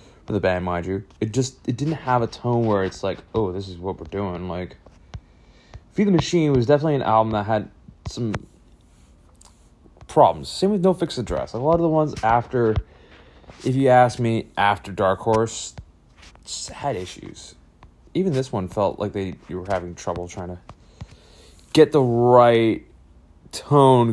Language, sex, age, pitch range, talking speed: English, male, 30-49, 95-135 Hz, 170 wpm